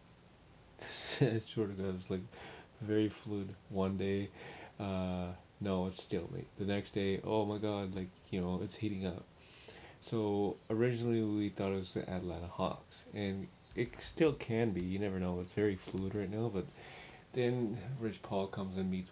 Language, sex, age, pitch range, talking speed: English, male, 30-49, 90-105 Hz, 165 wpm